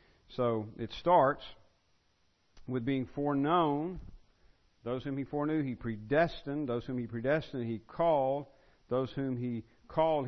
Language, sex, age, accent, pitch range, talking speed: English, male, 50-69, American, 115-145 Hz, 130 wpm